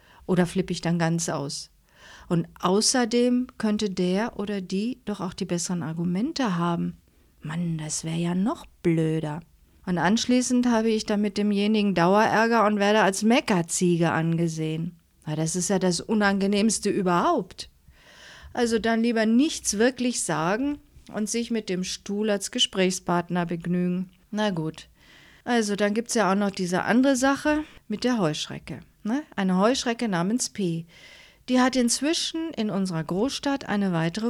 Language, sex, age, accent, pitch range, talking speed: German, female, 40-59, German, 180-240 Hz, 150 wpm